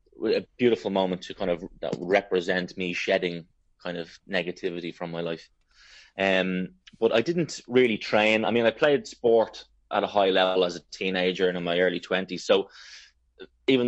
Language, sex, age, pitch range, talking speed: English, male, 20-39, 90-105 Hz, 175 wpm